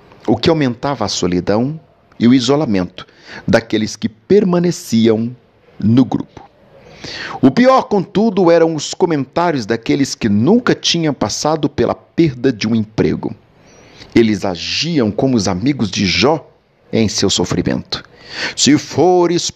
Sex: male